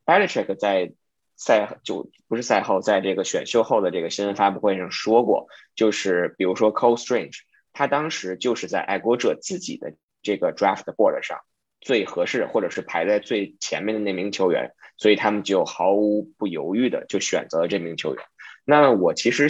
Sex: male